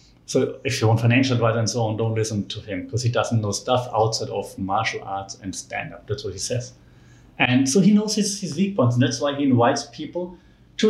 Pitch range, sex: 115-135 Hz, male